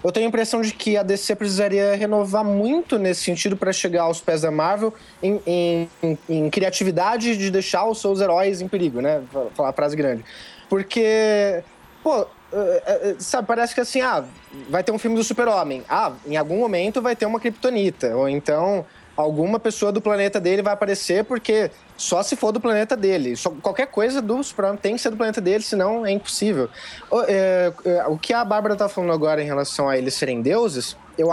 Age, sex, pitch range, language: 20-39, male, 170-220 Hz, Portuguese